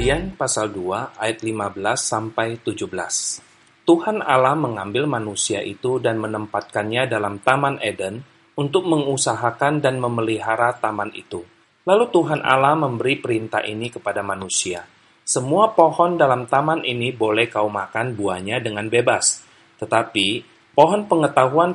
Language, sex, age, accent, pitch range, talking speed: Indonesian, male, 30-49, native, 110-155 Hz, 120 wpm